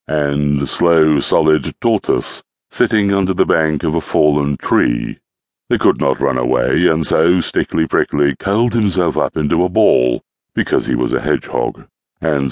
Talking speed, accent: 155 wpm, British